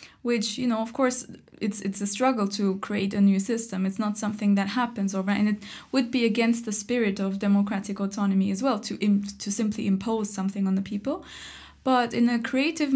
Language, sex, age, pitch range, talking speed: English, female, 20-39, 205-240 Hz, 210 wpm